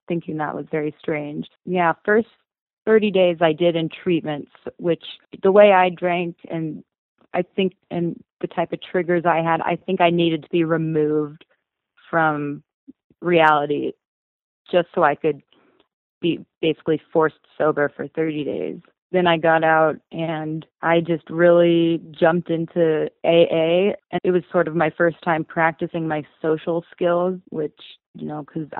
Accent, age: American, 20-39